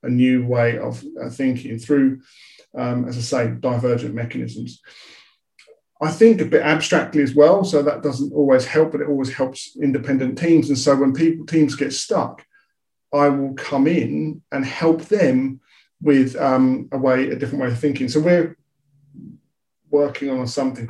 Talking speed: 165 wpm